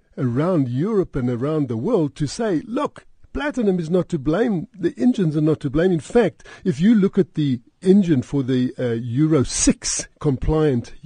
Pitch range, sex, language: 130-180 Hz, male, English